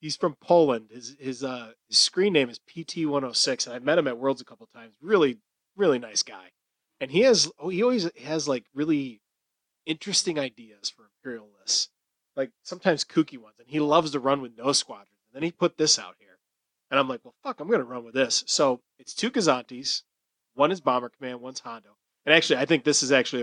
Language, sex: English, male